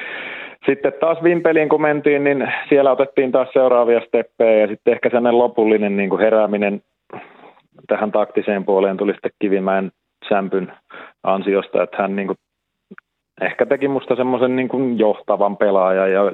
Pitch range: 100-115 Hz